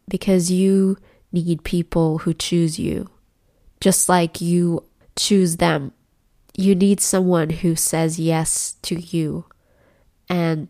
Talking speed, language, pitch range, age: 120 wpm, English, 165-190 Hz, 20-39